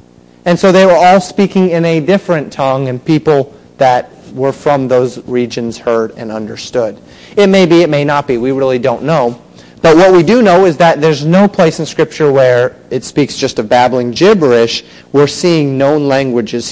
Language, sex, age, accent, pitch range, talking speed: English, male, 30-49, American, 125-170 Hz, 195 wpm